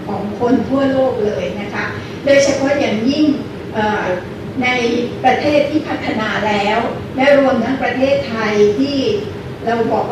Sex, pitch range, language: female, 225-275 Hz, Thai